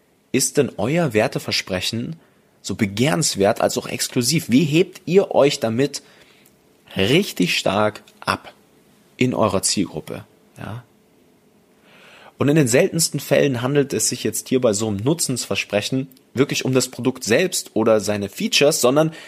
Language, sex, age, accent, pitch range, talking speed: German, male, 30-49, German, 100-145 Hz, 135 wpm